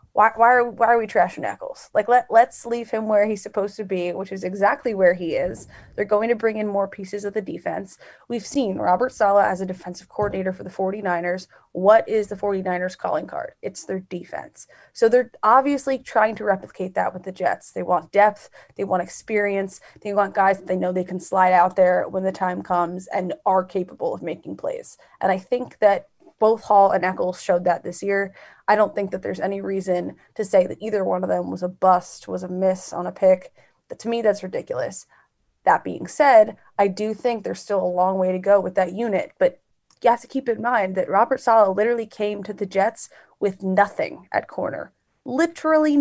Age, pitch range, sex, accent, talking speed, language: 20-39, 185-230 Hz, female, American, 220 wpm, English